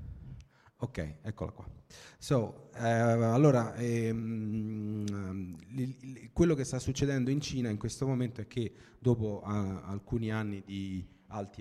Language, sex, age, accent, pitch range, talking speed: Italian, male, 30-49, native, 95-115 Hz, 125 wpm